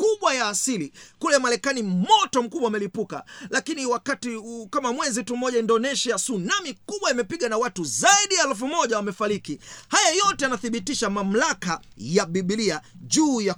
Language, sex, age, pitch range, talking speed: Swahili, male, 40-59, 205-285 Hz, 145 wpm